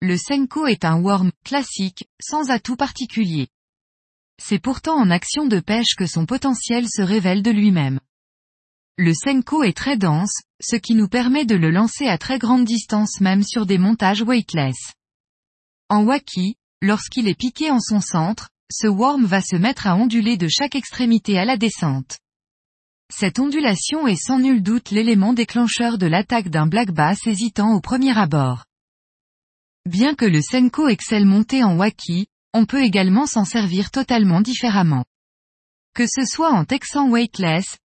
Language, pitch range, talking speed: French, 180-250 Hz, 160 wpm